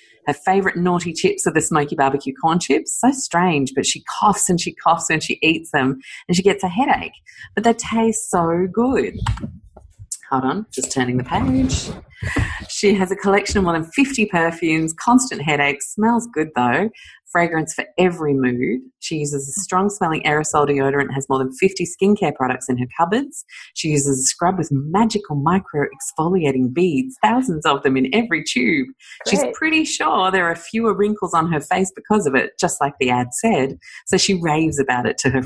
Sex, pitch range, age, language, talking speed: female, 145-200 Hz, 30-49, English, 190 wpm